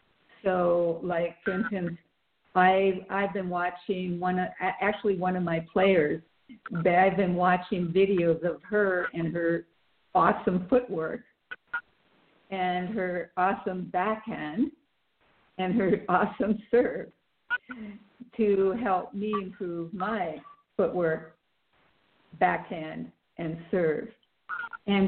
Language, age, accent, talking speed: English, 60-79, American, 100 wpm